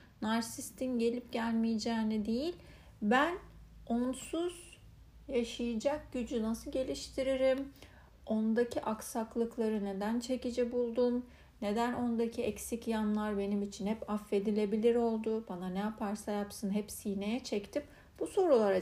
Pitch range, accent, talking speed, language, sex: 210-255 Hz, native, 105 wpm, Turkish, female